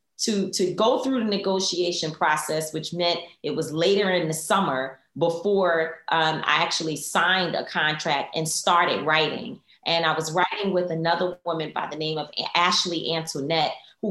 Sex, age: female, 30-49